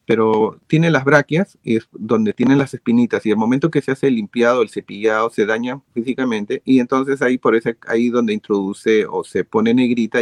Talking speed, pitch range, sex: 200 wpm, 115-150 Hz, male